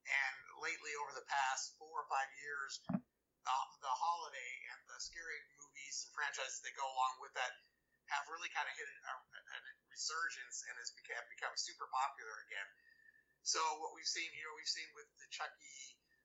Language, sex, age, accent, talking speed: English, male, 30-49, American, 180 wpm